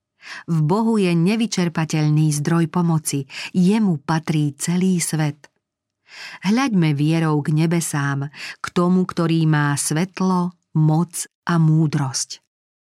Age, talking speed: 50-69, 100 wpm